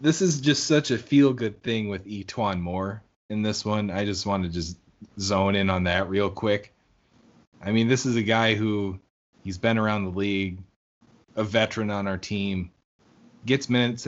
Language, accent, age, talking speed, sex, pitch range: English, American, 20-39, 185 wpm, male, 100-115 Hz